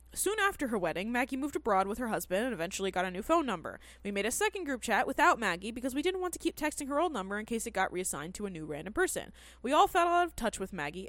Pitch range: 200-310 Hz